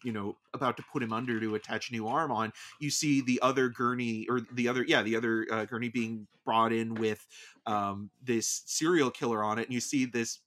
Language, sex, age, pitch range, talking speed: English, male, 30-49, 110-140 Hz, 230 wpm